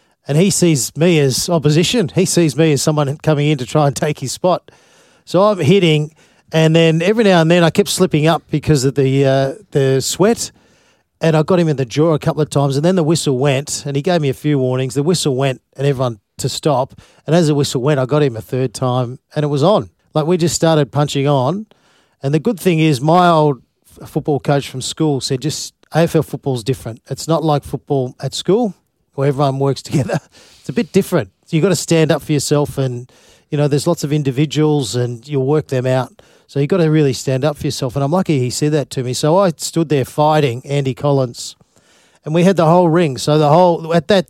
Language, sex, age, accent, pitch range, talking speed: English, male, 40-59, Australian, 135-165 Hz, 235 wpm